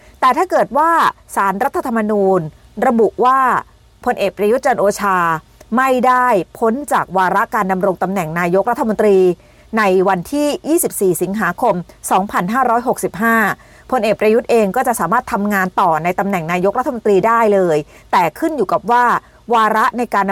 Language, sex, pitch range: Thai, female, 190-255 Hz